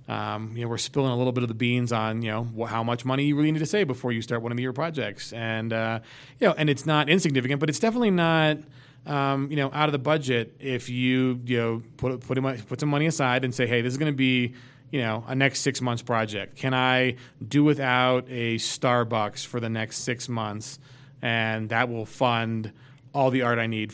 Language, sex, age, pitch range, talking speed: English, male, 30-49, 120-145 Hz, 240 wpm